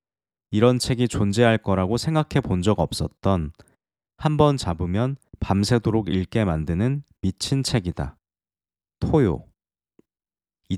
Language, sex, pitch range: Korean, male, 90-130 Hz